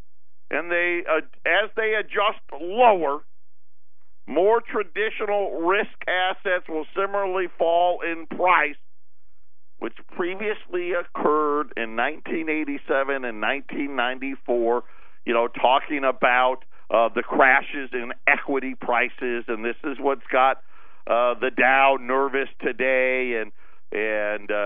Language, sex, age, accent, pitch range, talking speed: English, male, 50-69, American, 120-150 Hz, 110 wpm